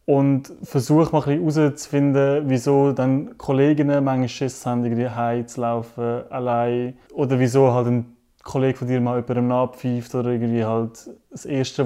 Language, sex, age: German, male, 20-39